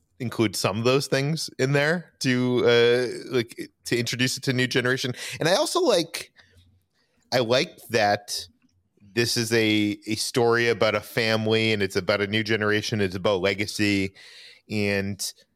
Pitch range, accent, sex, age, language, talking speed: 95-120 Hz, American, male, 30-49, English, 160 wpm